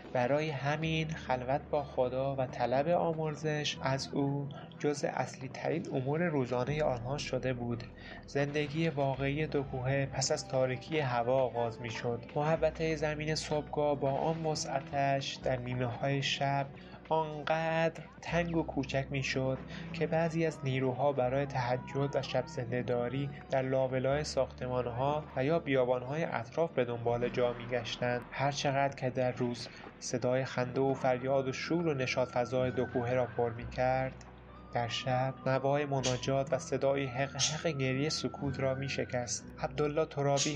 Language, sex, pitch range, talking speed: Persian, male, 125-150 Hz, 140 wpm